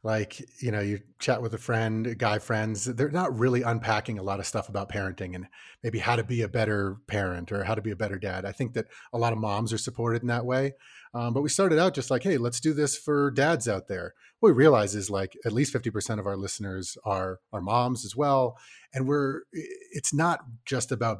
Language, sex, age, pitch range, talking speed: English, male, 30-49, 115-145 Hz, 240 wpm